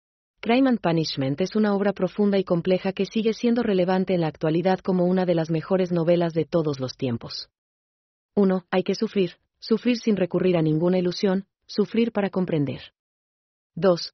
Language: German